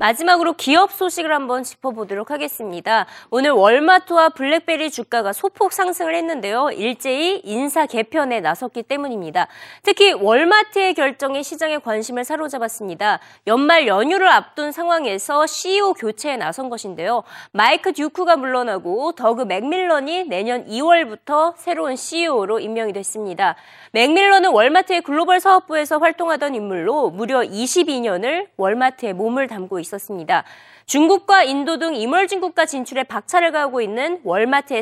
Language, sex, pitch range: Korean, female, 230-345 Hz